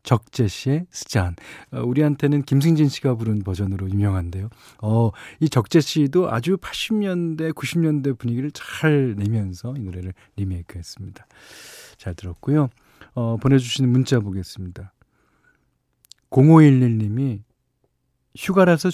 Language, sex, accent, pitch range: Korean, male, native, 105-150 Hz